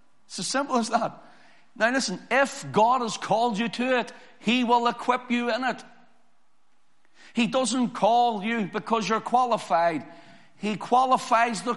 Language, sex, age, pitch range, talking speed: English, male, 50-69, 195-245 Hz, 155 wpm